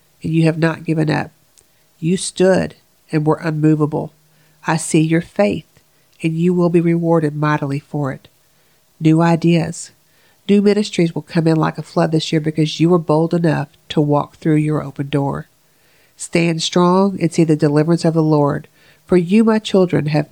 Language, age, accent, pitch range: English, 50-69, American, 150-175 Hz